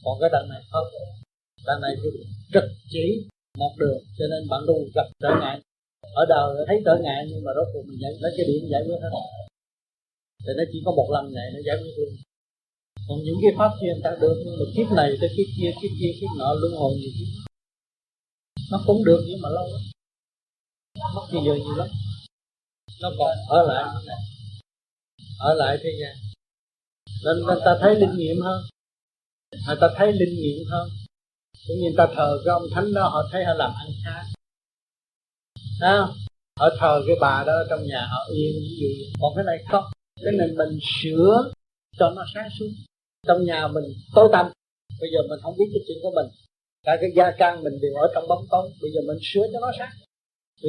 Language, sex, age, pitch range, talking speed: Vietnamese, male, 30-49, 120-175 Hz, 200 wpm